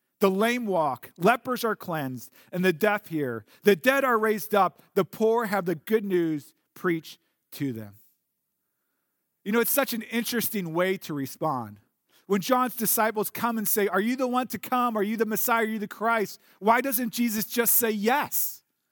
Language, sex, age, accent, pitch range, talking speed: English, male, 40-59, American, 180-230 Hz, 185 wpm